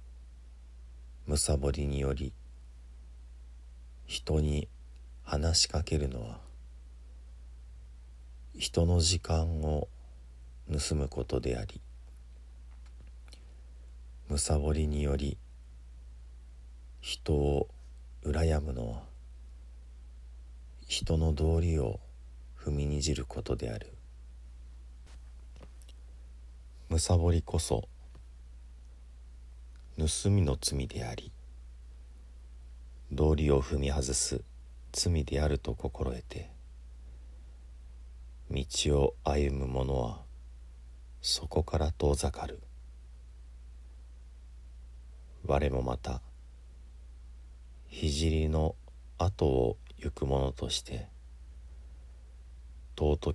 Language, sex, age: Japanese, male, 50-69